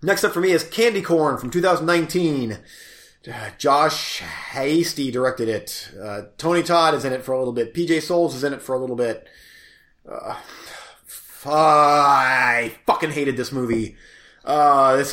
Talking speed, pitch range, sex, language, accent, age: 160 wpm, 125-160 Hz, male, English, American, 30-49